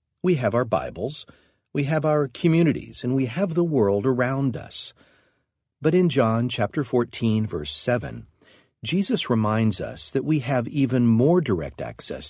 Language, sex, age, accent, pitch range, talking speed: English, male, 50-69, American, 105-145 Hz, 150 wpm